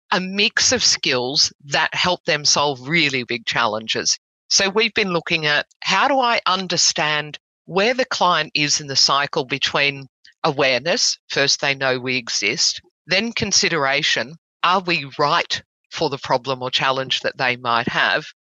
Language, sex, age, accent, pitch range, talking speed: English, female, 50-69, Australian, 140-175 Hz, 155 wpm